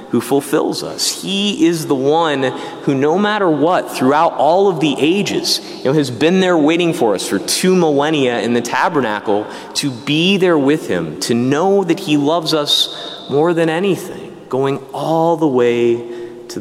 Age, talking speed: 30-49, 170 wpm